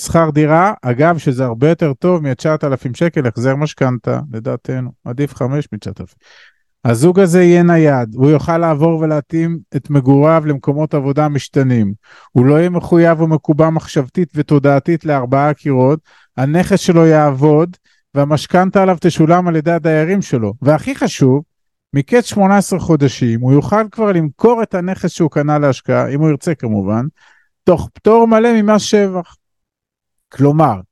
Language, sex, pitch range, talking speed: Hebrew, male, 135-180 Hz, 130 wpm